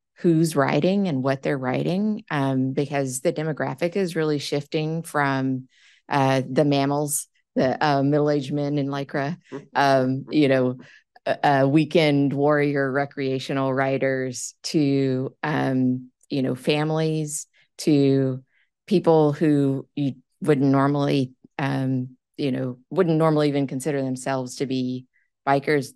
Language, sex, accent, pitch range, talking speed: English, female, American, 135-155 Hz, 125 wpm